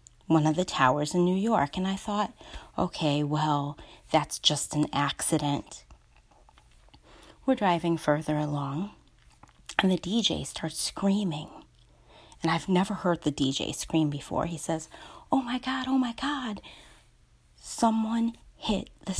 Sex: female